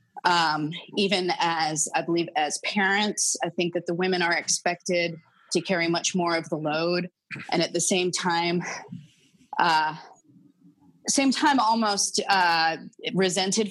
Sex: female